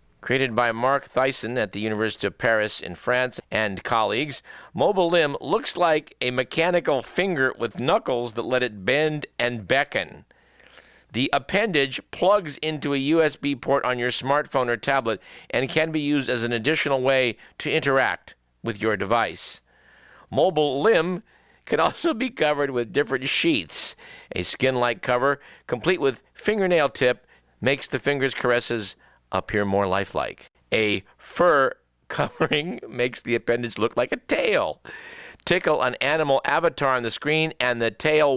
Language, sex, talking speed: English, male, 150 wpm